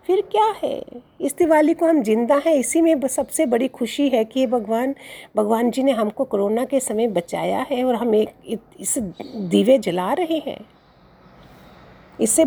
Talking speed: 175 wpm